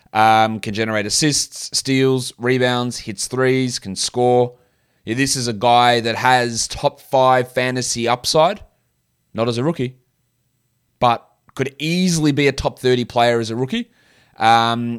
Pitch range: 115-140 Hz